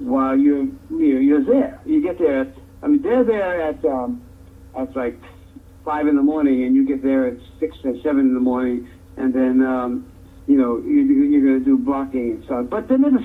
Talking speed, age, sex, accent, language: 220 wpm, 60-79, male, American, English